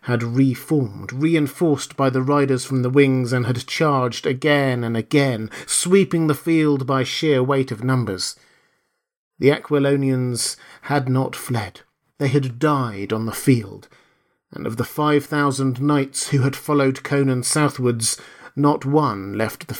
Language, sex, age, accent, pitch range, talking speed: English, male, 40-59, British, 125-155 Hz, 150 wpm